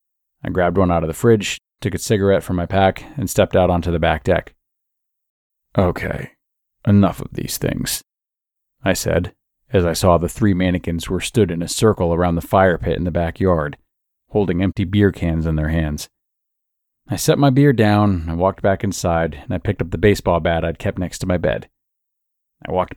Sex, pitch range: male, 85-105 Hz